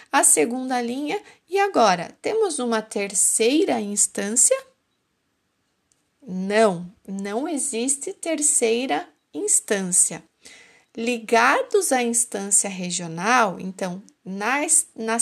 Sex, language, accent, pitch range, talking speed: female, Portuguese, Brazilian, 210-275 Hz, 85 wpm